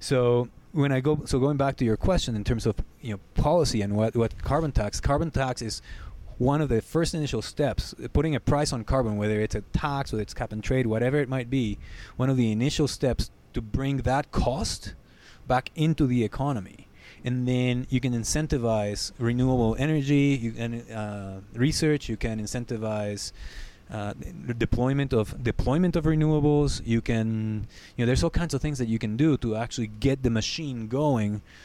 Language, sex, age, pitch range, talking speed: English, male, 20-39, 110-130 Hz, 190 wpm